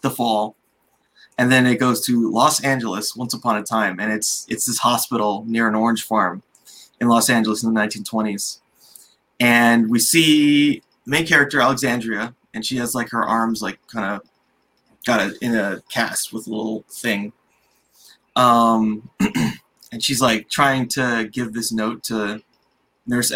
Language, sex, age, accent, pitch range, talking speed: English, male, 20-39, American, 110-130 Hz, 165 wpm